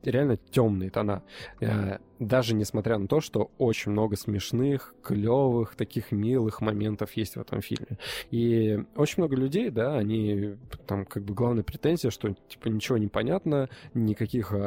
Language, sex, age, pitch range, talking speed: Russian, male, 20-39, 105-130 Hz, 145 wpm